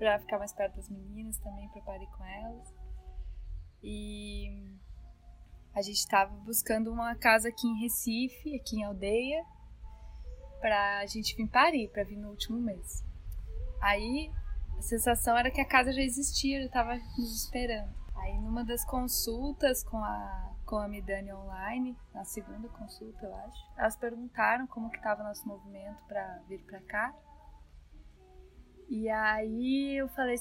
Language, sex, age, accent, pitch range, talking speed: Portuguese, female, 10-29, Brazilian, 195-240 Hz, 150 wpm